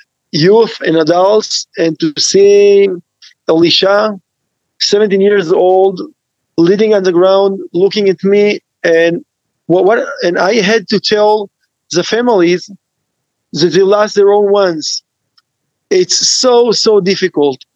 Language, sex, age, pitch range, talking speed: English, male, 40-59, 170-205 Hz, 125 wpm